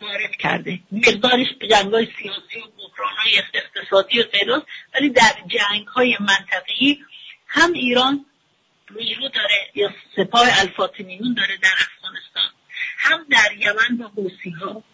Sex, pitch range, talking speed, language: female, 210-295 Hz, 130 wpm, English